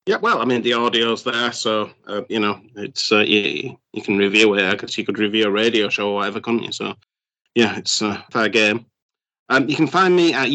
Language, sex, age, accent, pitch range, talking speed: English, male, 30-49, British, 110-135 Hz, 240 wpm